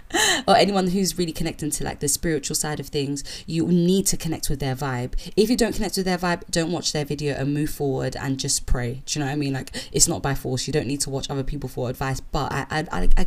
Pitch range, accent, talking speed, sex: 140-175 Hz, British, 275 wpm, female